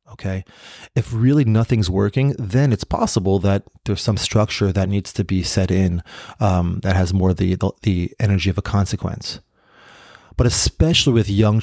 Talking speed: 170 wpm